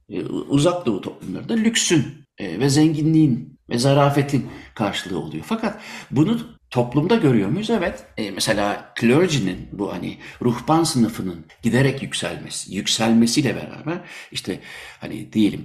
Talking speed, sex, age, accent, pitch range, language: 110 wpm, male, 60-79, native, 105-150 Hz, Turkish